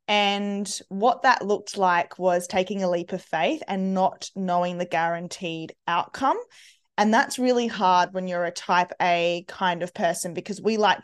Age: 20-39